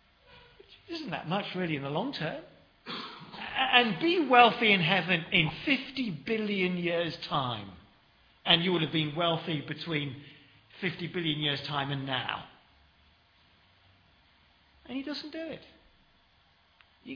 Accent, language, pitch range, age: British, English, 125-170 Hz, 50-69